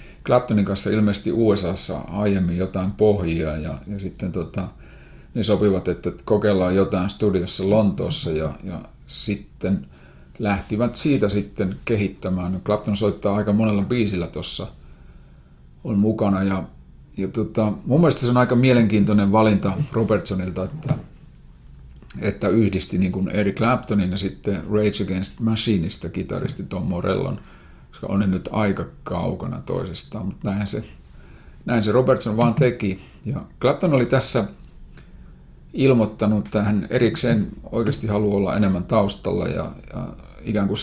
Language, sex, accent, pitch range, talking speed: Finnish, male, native, 90-110 Hz, 125 wpm